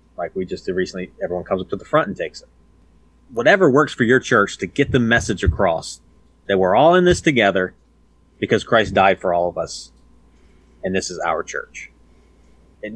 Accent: American